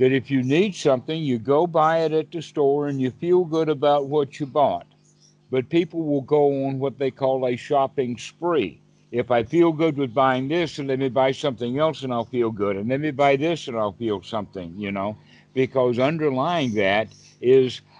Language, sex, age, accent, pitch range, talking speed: English, male, 60-79, American, 120-150 Hz, 210 wpm